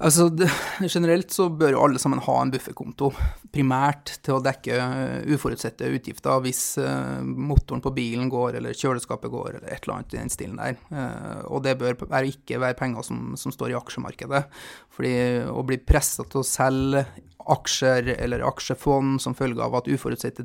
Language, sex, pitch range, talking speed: English, male, 130-150 Hz, 180 wpm